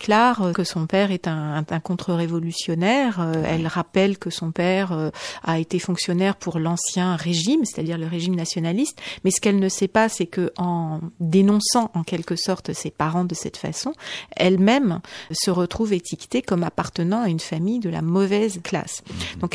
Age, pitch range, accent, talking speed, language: 40-59, 175-210 Hz, French, 170 wpm, French